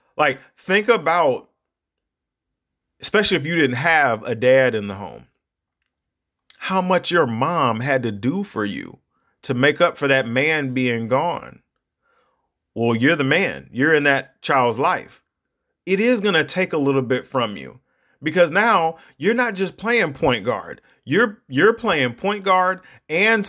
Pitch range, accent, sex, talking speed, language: 130-185 Hz, American, male, 160 wpm, English